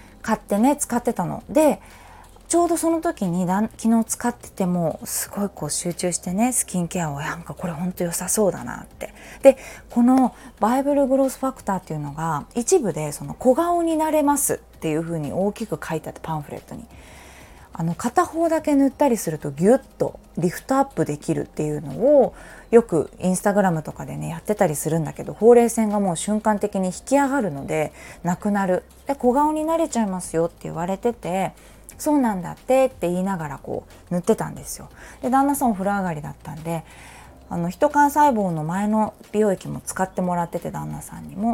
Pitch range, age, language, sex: 170-260 Hz, 20-39, Japanese, female